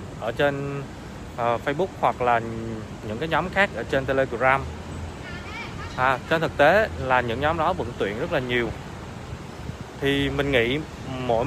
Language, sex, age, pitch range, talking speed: Vietnamese, male, 20-39, 115-140 Hz, 145 wpm